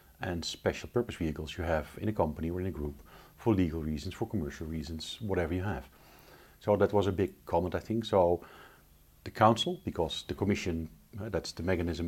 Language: English